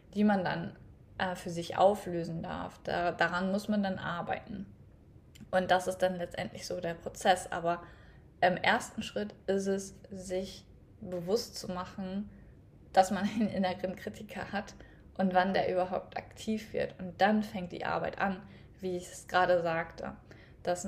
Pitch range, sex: 180-205 Hz, female